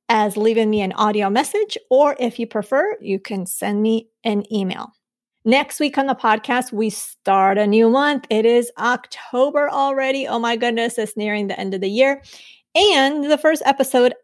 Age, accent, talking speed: 30-49, American, 185 wpm